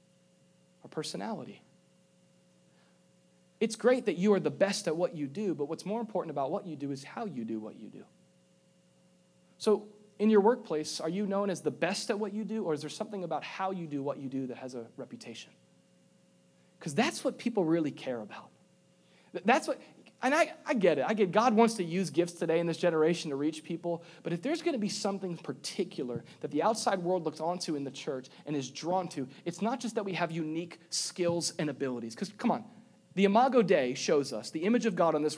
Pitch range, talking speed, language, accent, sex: 155-205 Hz, 220 wpm, English, American, male